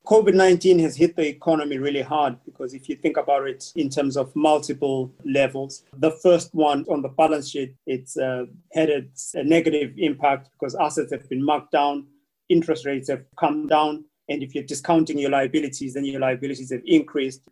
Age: 30-49